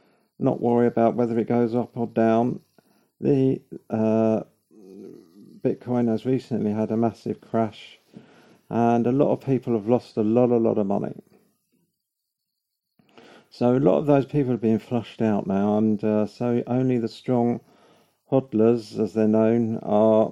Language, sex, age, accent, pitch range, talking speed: English, male, 50-69, British, 105-120 Hz, 155 wpm